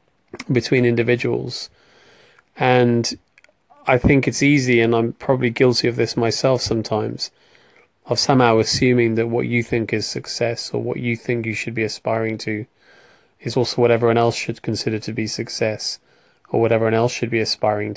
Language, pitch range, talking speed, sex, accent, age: English, 115-120 Hz, 165 wpm, male, British, 30-49